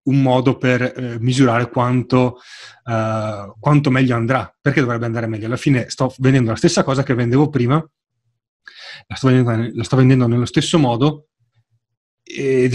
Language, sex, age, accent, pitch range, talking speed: Italian, male, 30-49, native, 115-140 Hz, 155 wpm